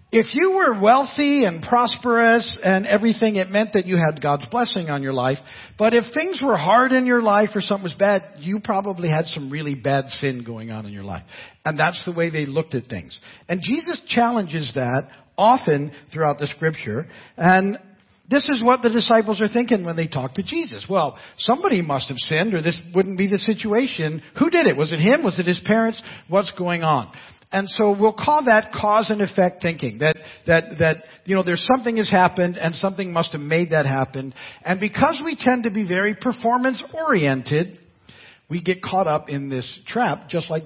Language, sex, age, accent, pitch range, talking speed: English, male, 50-69, American, 155-225 Hz, 200 wpm